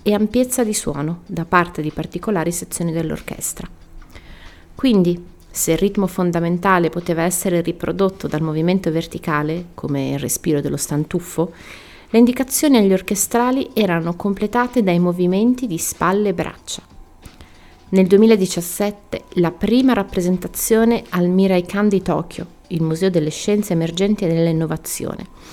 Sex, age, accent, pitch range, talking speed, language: female, 30-49, native, 165-205 Hz, 130 wpm, Italian